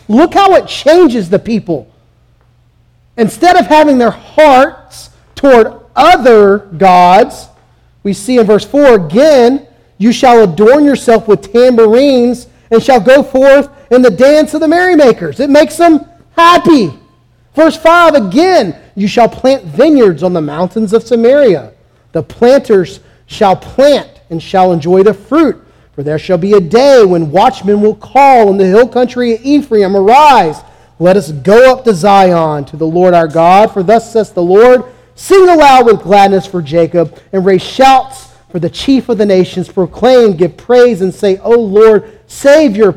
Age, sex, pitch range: 40-59, male, 190-280 Hz